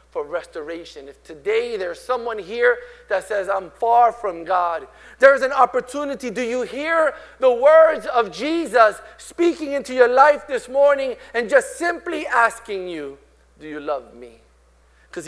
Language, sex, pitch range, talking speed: English, male, 195-295 Hz, 155 wpm